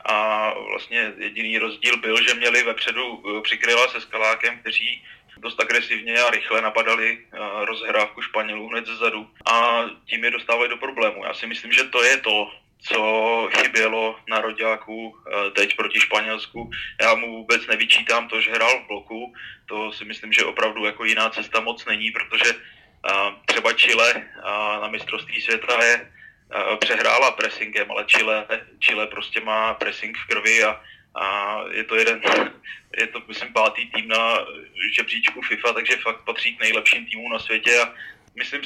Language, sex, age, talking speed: Czech, male, 20-39, 155 wpm